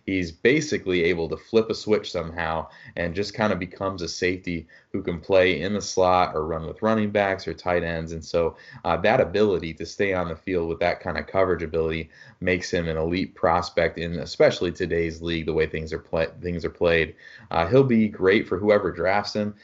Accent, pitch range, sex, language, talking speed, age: American, 85-100 Hz, male, English, 215 wpm, 20-39